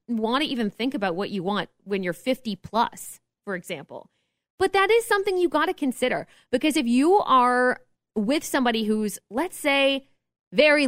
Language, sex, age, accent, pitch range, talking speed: English, female, 20-39, American, 210-280 Hz, 175 wpm